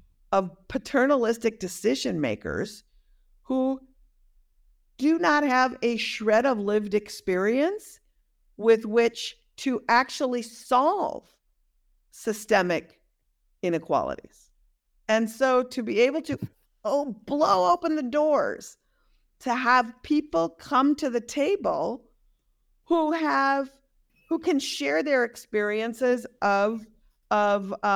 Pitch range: 210-290 Hz